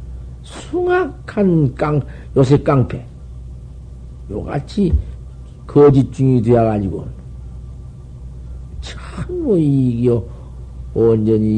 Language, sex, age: Korean, male, 50-69